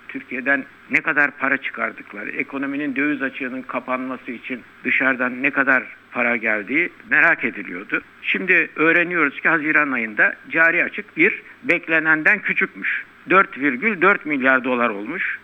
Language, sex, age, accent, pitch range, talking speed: Turkish, male, 60-79, native, 130-165 Hz, 120 wpm